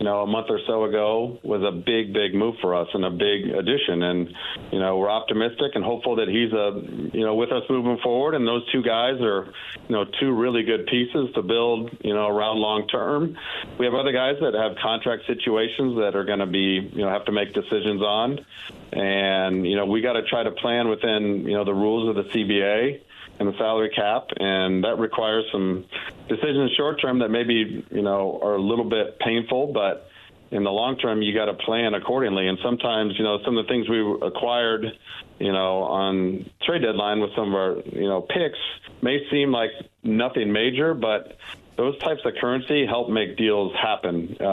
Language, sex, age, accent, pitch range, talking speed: English, male, 40-59, American, 100-120 Hz, 210 wpm